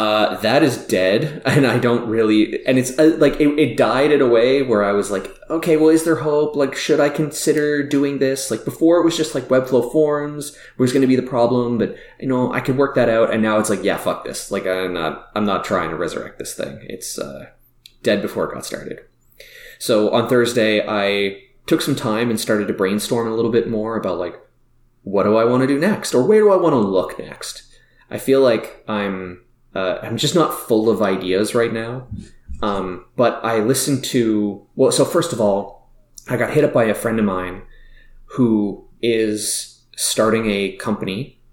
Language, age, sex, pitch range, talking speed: English, 20-39, male, 100-135 Hz, 215 wpm